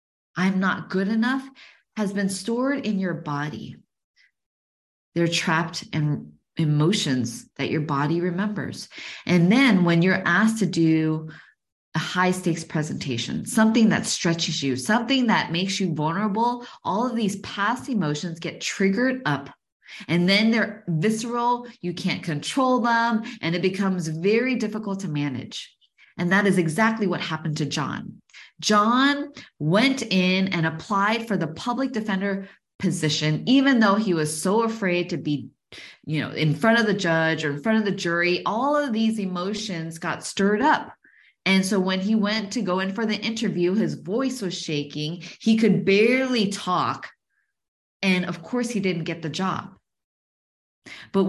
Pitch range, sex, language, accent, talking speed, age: 165-225 Hz, female, English, American, 160 wpm, 20-39